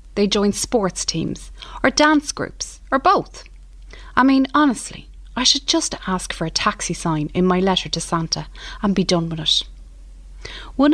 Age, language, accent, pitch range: 30-49, English, Irish, 165-235 Hz